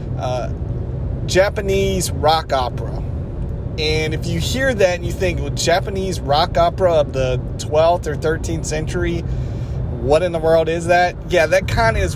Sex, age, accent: male, 30-49, American